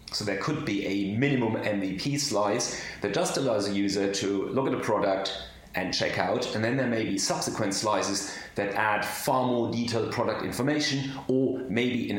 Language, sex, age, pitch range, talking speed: English, male, 30-49, 95-115 Hz, 185 wpm